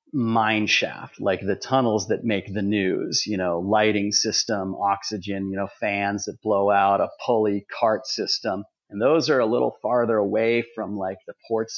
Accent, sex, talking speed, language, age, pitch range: American, male, 180 wpm, English, 40-59, 105-135 Hz